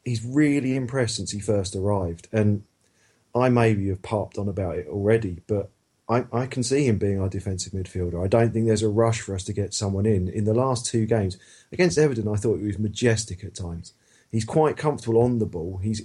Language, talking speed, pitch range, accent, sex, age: English, 220 wpm, 100-120 Hz, British, male, 40-59